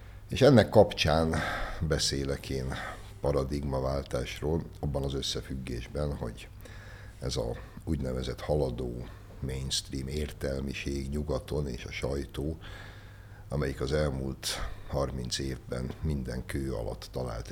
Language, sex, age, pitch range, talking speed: Hungarian, male, 60-79, 70-100 Hz, 100 wpm